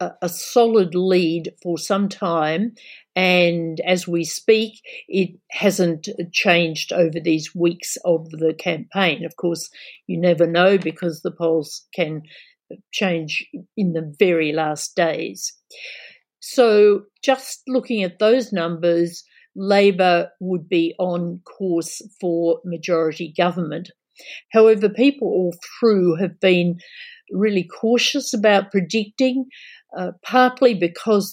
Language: English